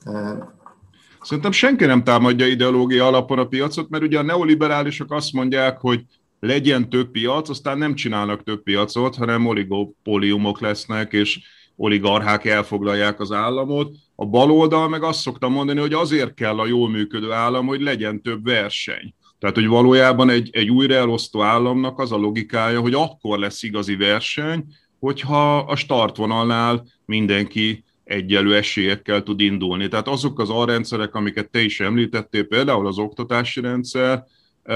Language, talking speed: Hungarian, 145 wpm